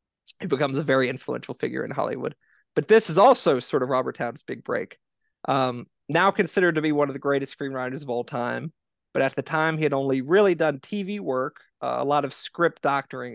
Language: English